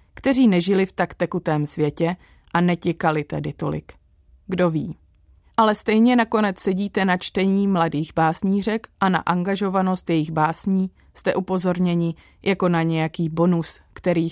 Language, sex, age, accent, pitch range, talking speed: Czech, female, 30-49, native, 155-190 Hz, 135 wpm